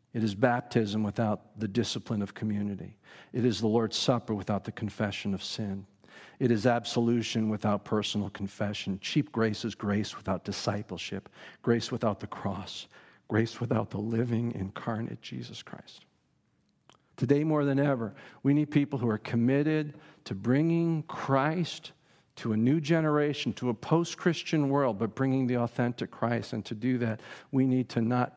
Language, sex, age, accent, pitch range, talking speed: English, male, 50-69, American, 110-150 Hz, 160 wpm